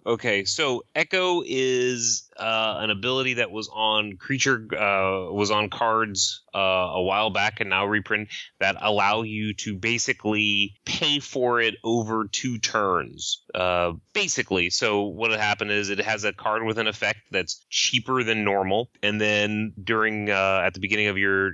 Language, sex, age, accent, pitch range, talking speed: English, male, 30-49, American, 95-115 Hz, 165 wpm